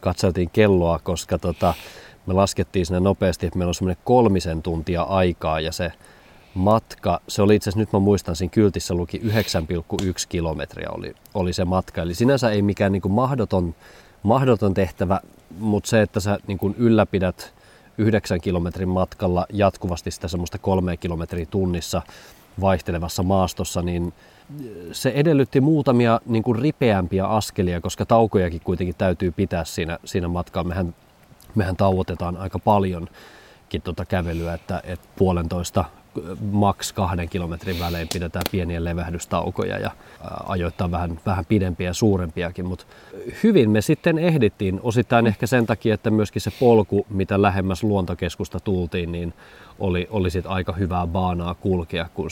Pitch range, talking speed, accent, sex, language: 90-105 Hz, 140 wpm, native, male, Finnish